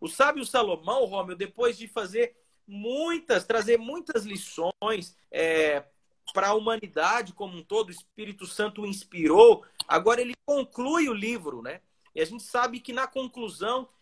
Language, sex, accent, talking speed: Portuguese, male, Brazilian, 150 wpm